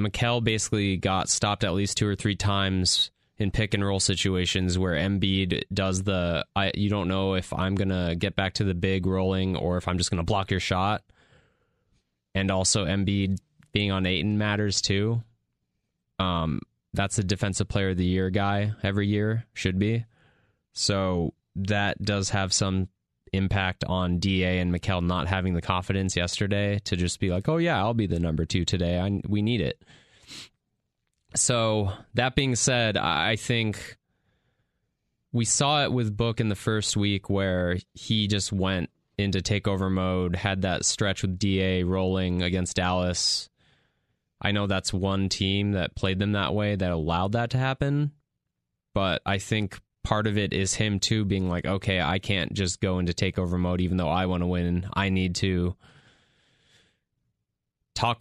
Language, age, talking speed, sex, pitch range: English, 20-39, 170 wpm, male, 90-105 Hz